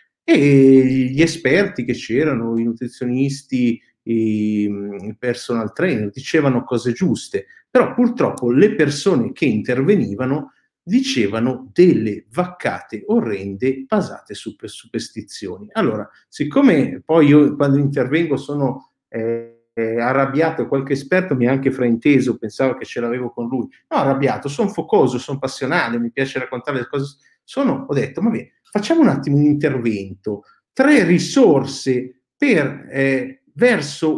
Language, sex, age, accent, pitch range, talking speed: Italian, male, 50-69, native, 125-185 Hz, 125 wpm